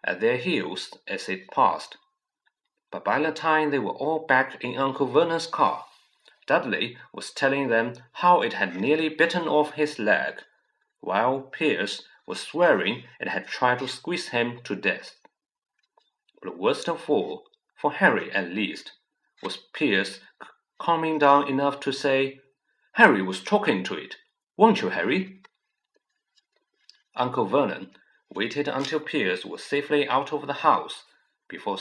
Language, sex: Chinese, male